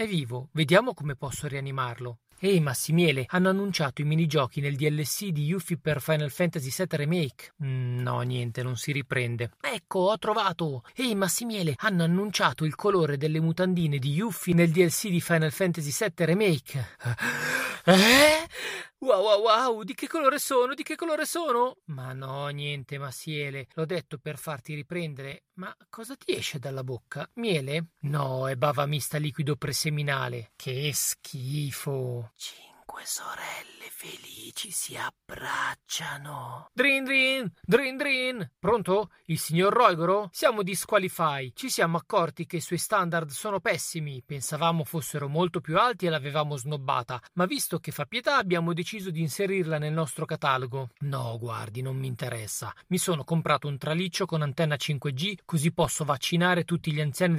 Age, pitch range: 40-59, 140-185 Hz